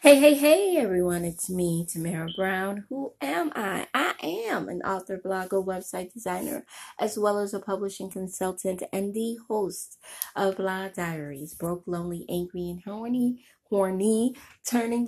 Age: 20-39